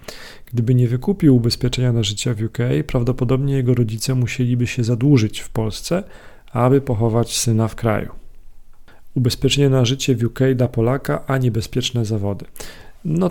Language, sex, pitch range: Polish, male, 120-135 Hz